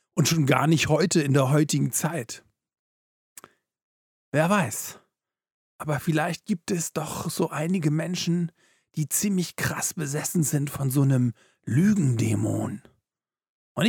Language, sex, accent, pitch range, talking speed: German, male, German, 140-180 Hz, 125 wpm